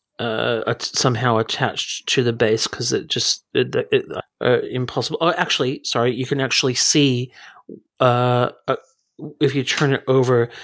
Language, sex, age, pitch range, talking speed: English, male, 40-59, 125-145 Hz, 150 wpm